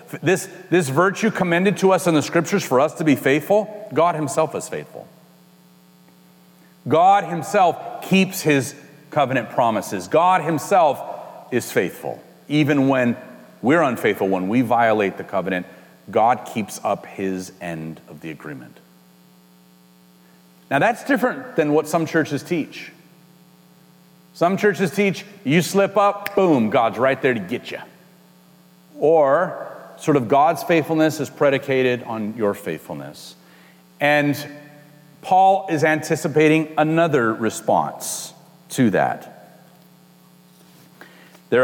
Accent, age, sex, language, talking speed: American, 40-59, male, English, 120 wpm